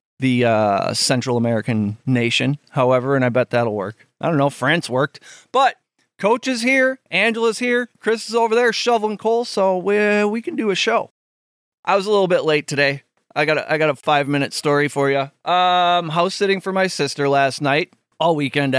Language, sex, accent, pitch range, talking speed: English, male, American, 145-210 Hz, 190 wpm